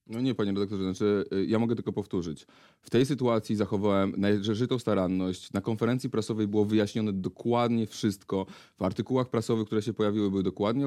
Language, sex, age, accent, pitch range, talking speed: Polish, male, 30-49, native, 100-120 Hz, 165 wpm